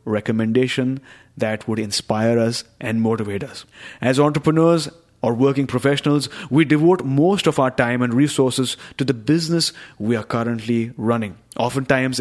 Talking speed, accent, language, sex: 145 wpm, Indian, English, male